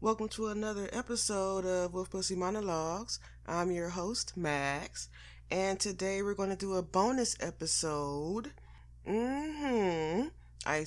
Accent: American